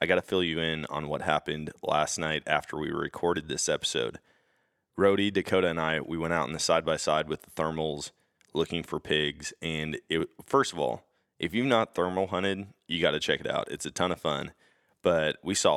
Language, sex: English, male